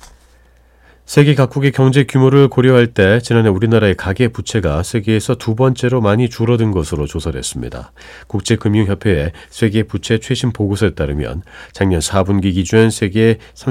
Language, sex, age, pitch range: Korean, male, 40-59, 80-115 Hz